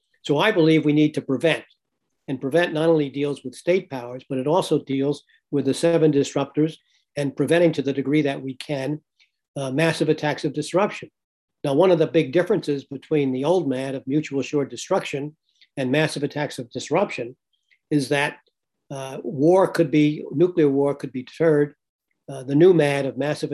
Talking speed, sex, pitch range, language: 185 wpm, male, 135-155 Hz, English